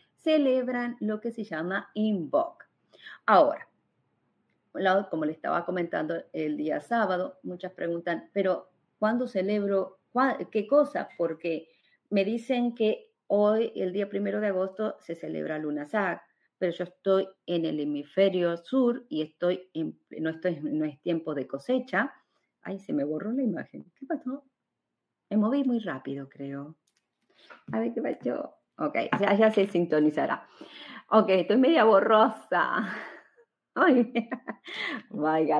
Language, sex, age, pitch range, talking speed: Spanish, female, 40-59, 165-230 Hz, 140 wpm